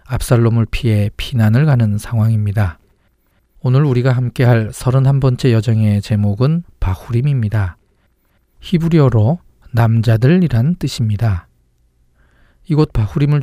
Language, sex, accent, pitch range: Korean, male, native, 105-135 Hz